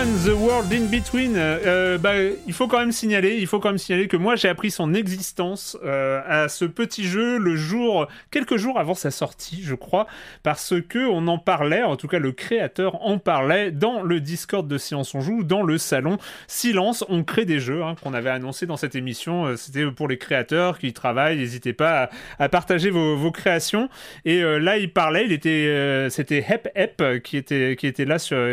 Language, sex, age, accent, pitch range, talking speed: French, male, 30-49, French, 140-190 Hz, 210 wpm